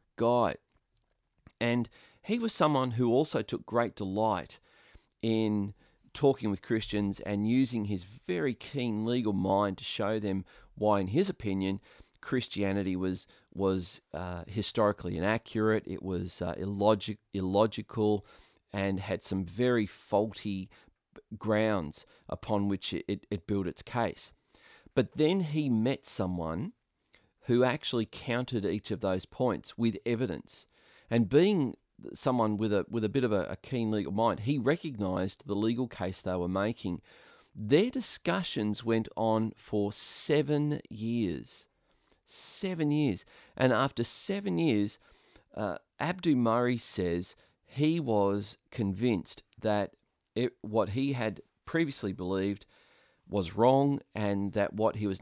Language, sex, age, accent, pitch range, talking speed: English, male, 30-49, Australian, 100-120 Hz, 130 wpm